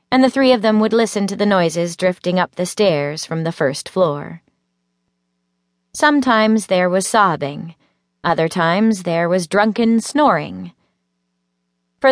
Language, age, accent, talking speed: English, 30-49, American, 145 wpm